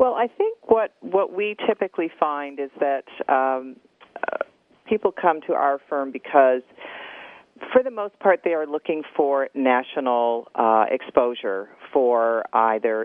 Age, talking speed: 40-59, 145 wpm